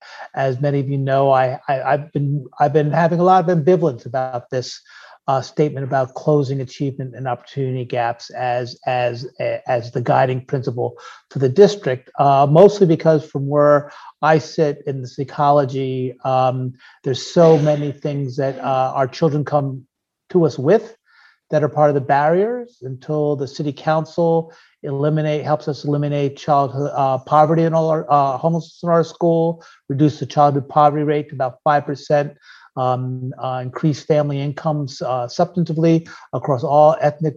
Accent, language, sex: American, English, male